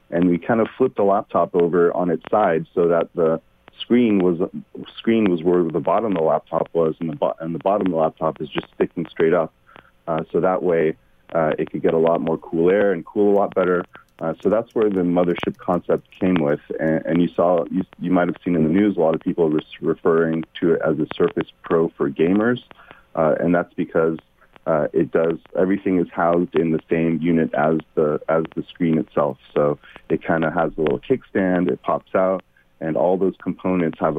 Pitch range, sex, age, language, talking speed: 80-95 Hz, male, 40-59, English, 225 wpm